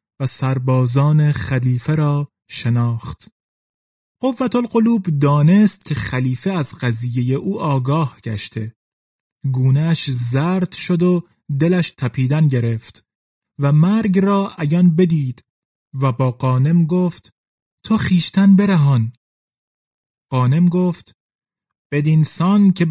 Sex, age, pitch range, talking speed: male, 30-49, 135-185 Hz, 100 wpm